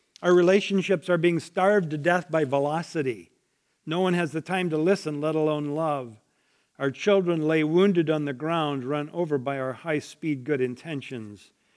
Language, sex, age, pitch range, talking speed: English, male, 50-69, 145-180 Hz, 170 wpm